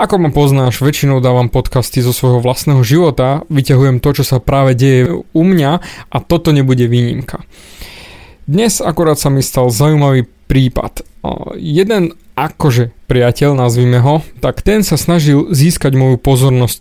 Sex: male